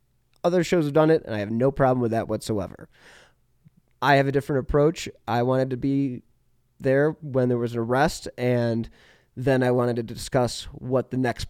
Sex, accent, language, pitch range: male, American, English, 115-140 Hz